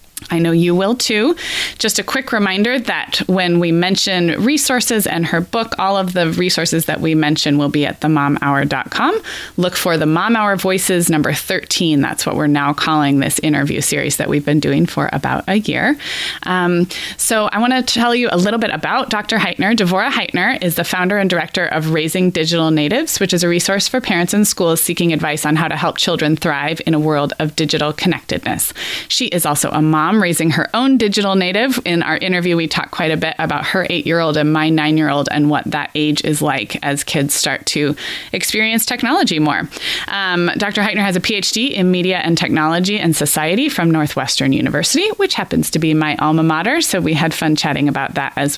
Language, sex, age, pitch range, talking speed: English, female, 20-39, 155-205 Hz, 205 wpm